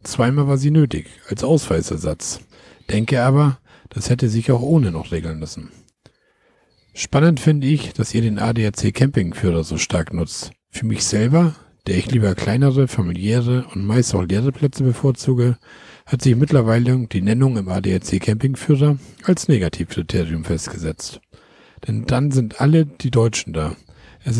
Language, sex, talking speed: German, male, 145 wpm